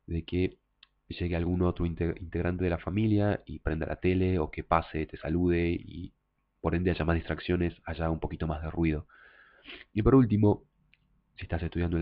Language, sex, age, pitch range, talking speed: English, male, 30-49, 85-95 Hz, 185 wpm